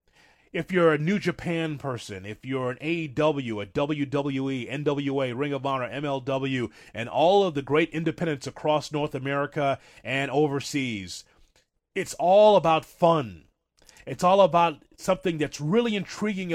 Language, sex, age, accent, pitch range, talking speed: English, male, 30-49, American, 135-170 Hz, 140 wpm